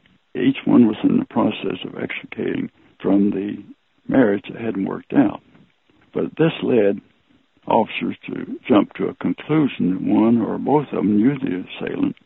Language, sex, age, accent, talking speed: English, male, 60-79, American, 160 wpm